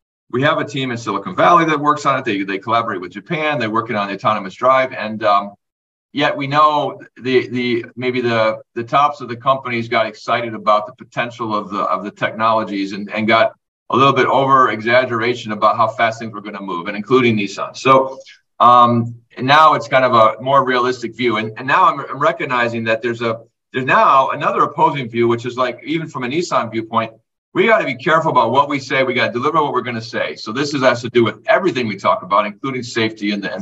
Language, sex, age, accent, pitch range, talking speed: English, male, 40-59, American, 115-145 Hz, 230 wpm